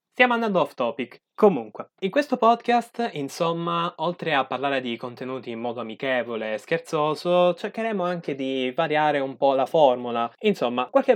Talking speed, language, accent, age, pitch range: 155 wpm, Italian, native, 20-39, 125-180 Hz